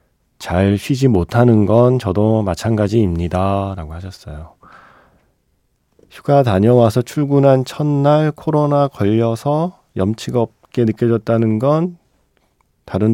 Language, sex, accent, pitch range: Korean, male, native, 95-130 Hz